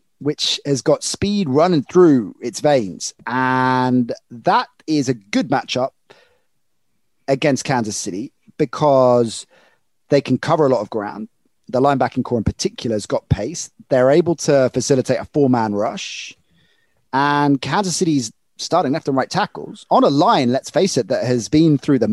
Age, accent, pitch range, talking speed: 30-49, British, 120-150 Hz, 160 wpm